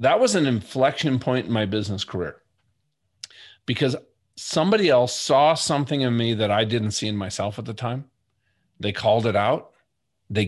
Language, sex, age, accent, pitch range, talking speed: English, male, 40-59, American, 110-135 Hz, 170 wpm